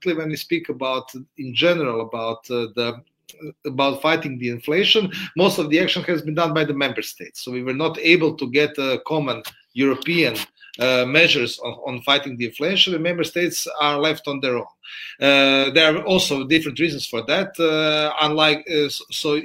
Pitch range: 125-160 Hz